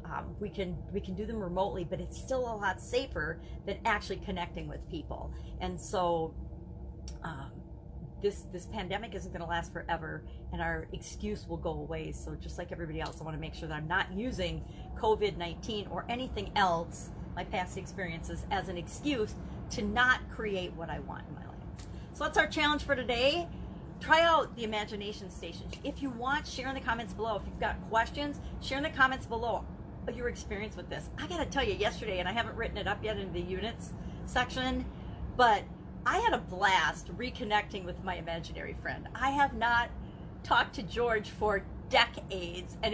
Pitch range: 175-245 Hz